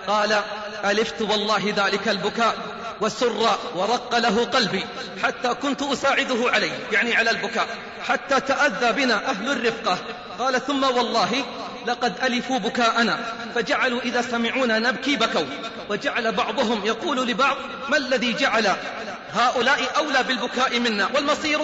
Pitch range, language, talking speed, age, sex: 225-270 Hz, Arabic, 120 wpm, 40-59, male